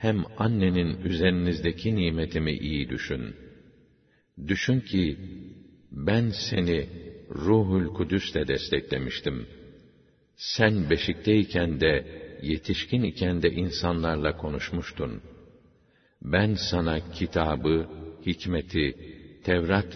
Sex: male